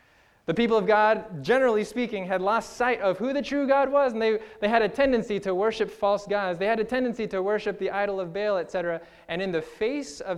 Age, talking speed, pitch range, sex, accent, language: 20-39, 235 wpm, 170-230 Hz, male, American, English